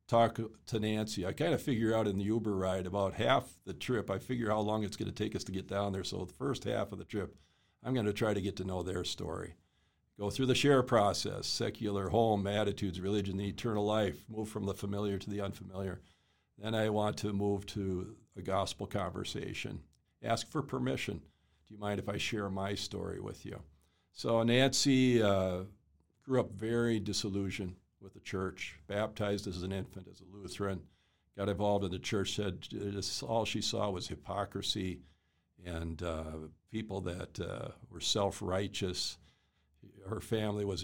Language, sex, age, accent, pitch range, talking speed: English, male, 50-69, American, 95-110 Hz, 180 wpm